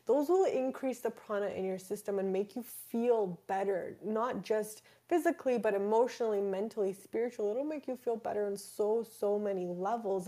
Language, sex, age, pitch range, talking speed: English, female, 20-39, 190-225 Hz, 170 wpm